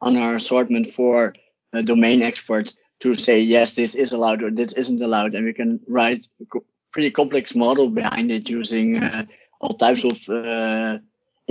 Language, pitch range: English, 120-140 Hz